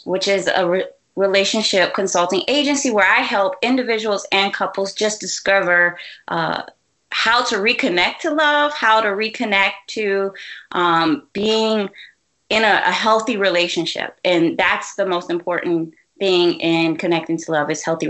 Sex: female